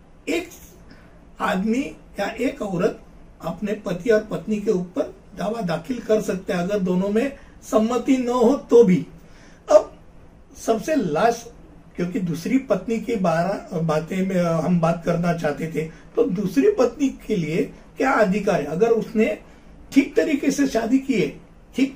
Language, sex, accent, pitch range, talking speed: Hindi, male, native, 180-235 Hz, 150 wpm